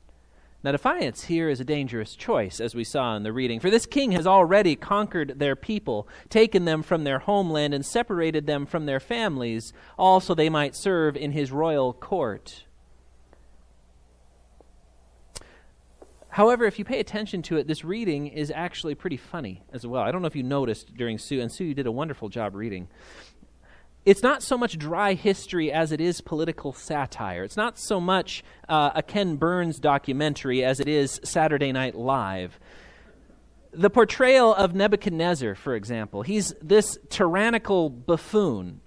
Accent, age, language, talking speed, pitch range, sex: American, 30-49, English, 165 wpm, 125-190 Hz, male